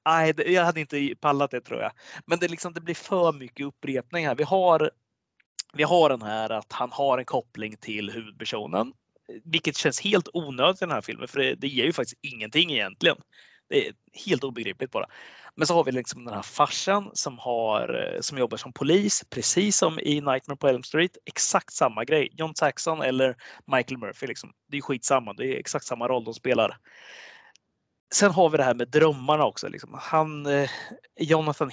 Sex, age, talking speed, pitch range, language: male, 30-49, 195 wpm, 130-175 Hz, Swedish